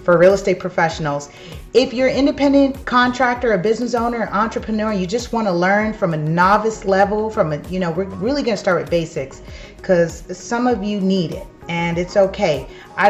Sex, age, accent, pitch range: female, 30-49, American, 165-205 Hz